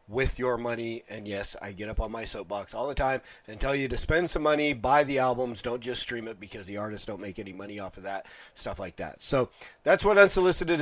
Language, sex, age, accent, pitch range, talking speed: English, male, 30-49, American, 115-145 Hz, 250 wpm